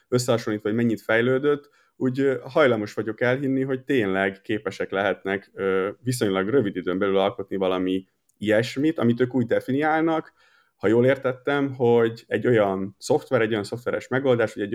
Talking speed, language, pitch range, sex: 145 wpm, Hungarian, 100-125 Hz, male